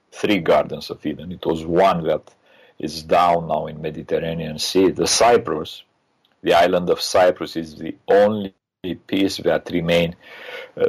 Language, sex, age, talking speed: English, male, 40-59, 150 wpm